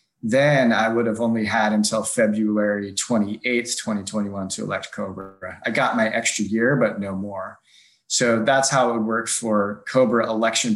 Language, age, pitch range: English, 20-39, 105-120 Hz